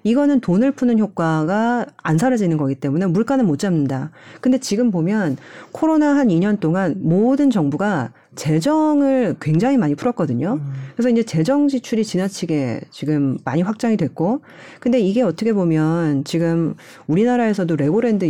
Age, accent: 40-59, native